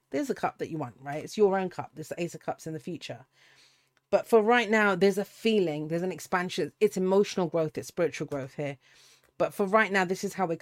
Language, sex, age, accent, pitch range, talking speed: English, female, 30-49, British, 145-195 Hz, 250 wpm